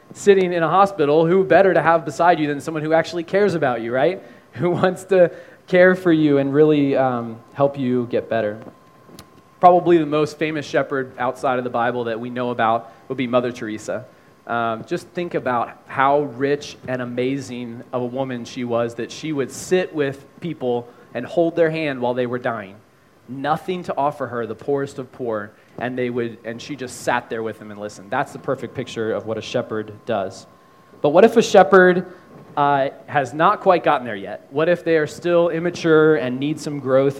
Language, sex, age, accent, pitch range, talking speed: English, male, 20-39, American, 125-170 Hz, 205 wpm